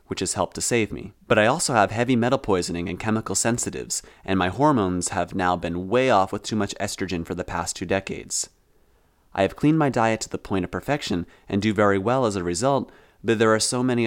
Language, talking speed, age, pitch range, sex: English, 235 wpm, 30-49, 90-115 Hz, male